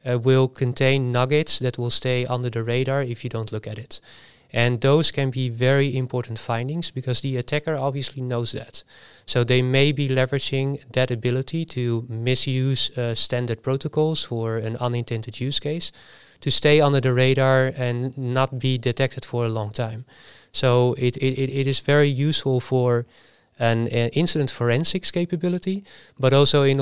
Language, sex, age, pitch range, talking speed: Dutch, male, 30-49, 120-140 Hz, 165 wpm